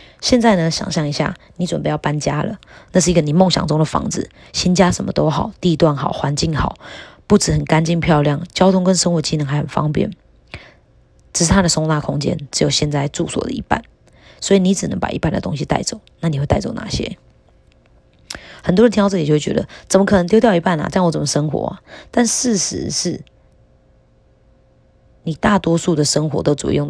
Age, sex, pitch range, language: 20-39, female, 150-185 Hz, Chinese